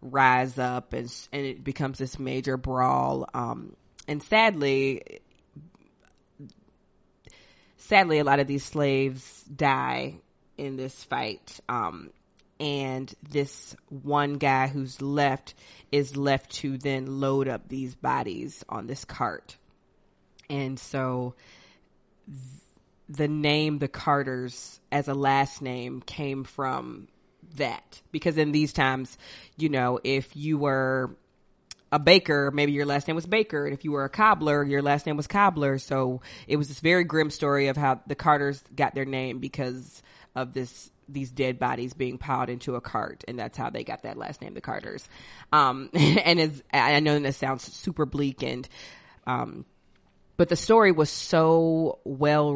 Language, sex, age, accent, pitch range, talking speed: English, female, 20-39, American, 130-150 Hz, 150 wpm